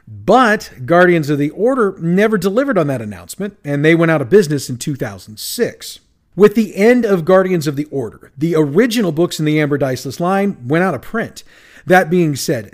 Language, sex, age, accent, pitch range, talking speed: English, male, 40-59, American, 140-200 Hz, 195 wpm